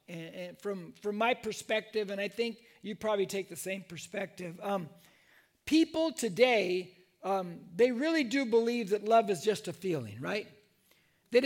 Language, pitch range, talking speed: English, 190-245 Hz, 155 wpm